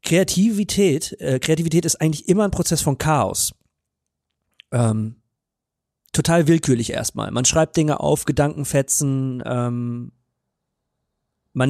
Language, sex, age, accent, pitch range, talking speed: German, male, 40-59, German, 130-155 Hz, 105 wpm